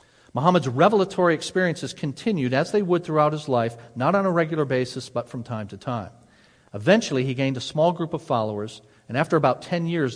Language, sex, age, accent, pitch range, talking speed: English, male, 50-69, American, 115-155 Hz, 195 wpm